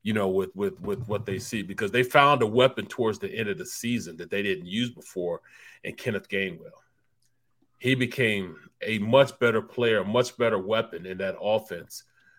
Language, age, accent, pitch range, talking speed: English, 30-49, American, 105-130 Hz, 195 wpm